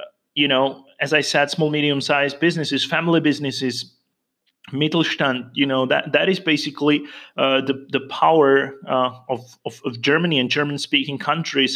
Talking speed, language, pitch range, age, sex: 155 wpm, English, 135-160 Hz, 30-49, male